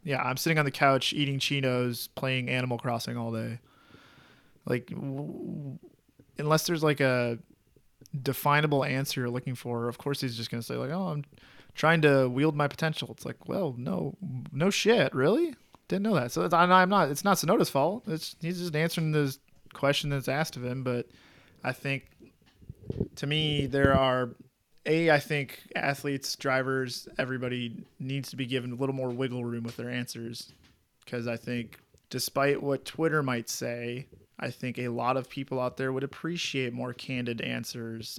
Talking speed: 175 wpm